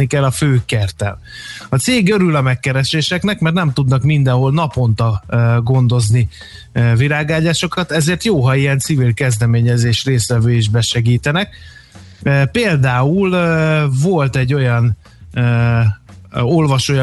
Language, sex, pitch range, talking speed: Hungarian, male, 120-150 Hz, 100 wpm